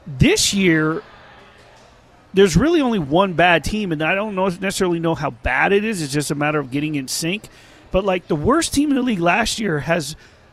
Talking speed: 210 wpm